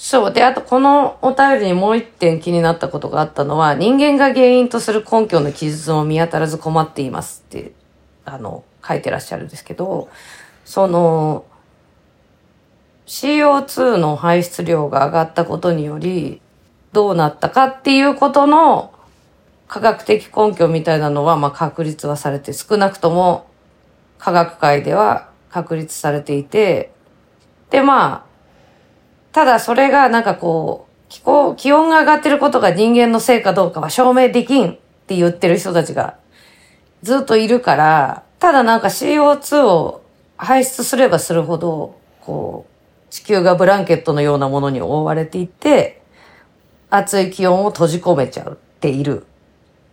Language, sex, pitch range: Japanese, female, 160-250 Hz